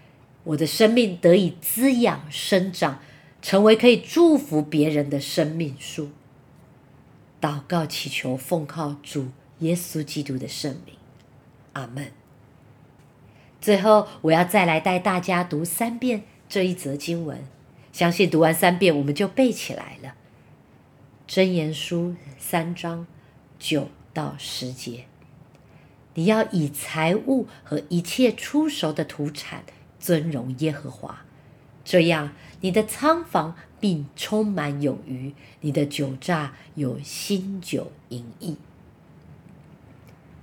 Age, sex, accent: 50-69, female, American